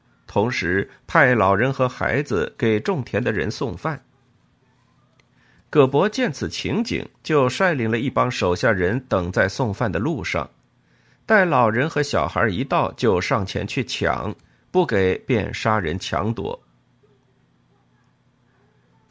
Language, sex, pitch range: Chinese, male, 100-135 Hz